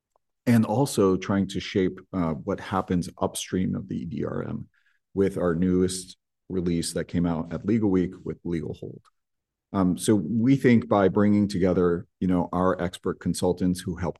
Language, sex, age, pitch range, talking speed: English, male, 40-59, 90-105 Hz, 165 wpm